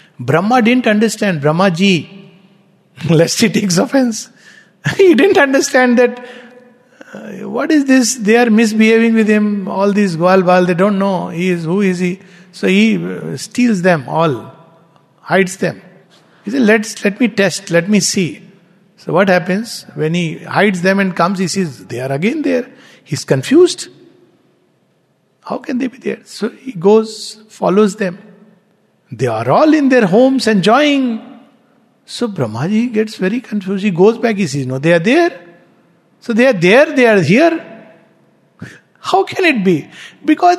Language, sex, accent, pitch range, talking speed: English, male, Indian, 185-255 Hz, 160 wpm